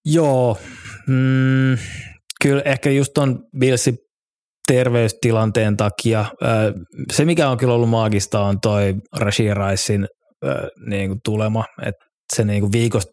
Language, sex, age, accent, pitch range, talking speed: Finnish, male, 20-39, native, 105-120 Hz, 115 wpm